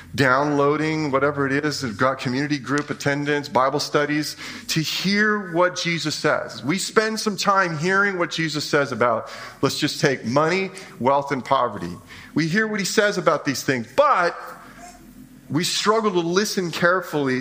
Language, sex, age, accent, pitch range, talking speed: English, male, 40-59, American, 130-180 Hz, 160 wpm